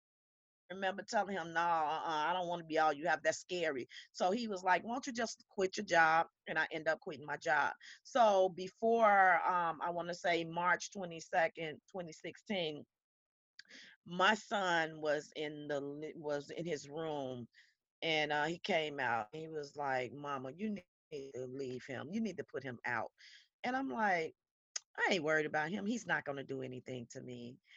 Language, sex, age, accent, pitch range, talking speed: English, female, 40-59, American, 150-235 Hz, 190 wpm